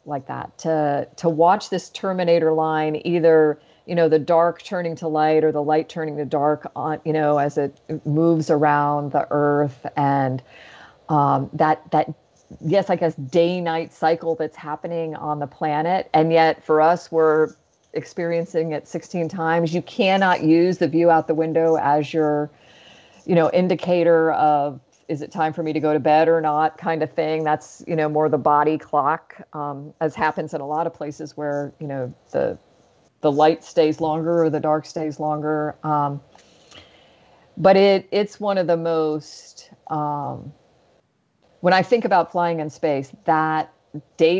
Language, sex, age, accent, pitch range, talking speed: English, female, 40-59, American, 150-165 Hz, 175 wpm